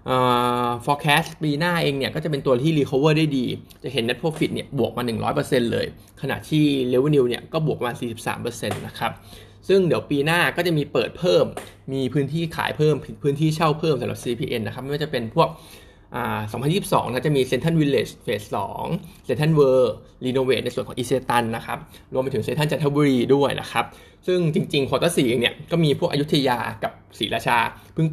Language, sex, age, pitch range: Thai, male, 20-39, 120-155 Hz